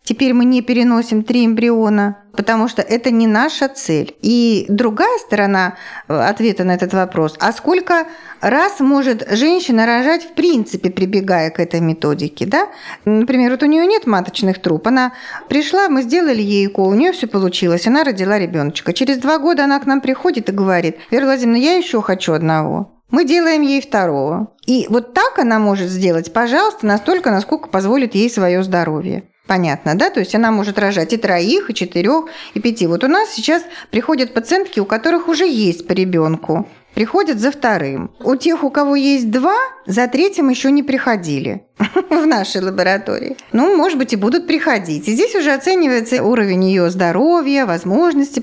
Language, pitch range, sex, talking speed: Russian, 190-280 Hz, female, 175 wpm